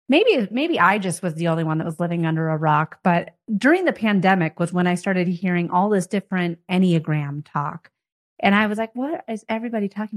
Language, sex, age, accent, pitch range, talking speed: English, female, 30-49, American, 170-220 Hz, 210 wpm